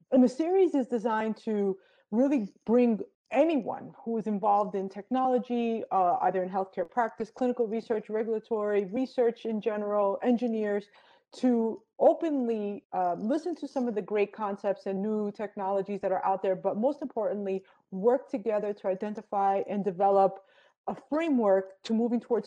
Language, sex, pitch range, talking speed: English, female, 195-240 Hz, 150 wpm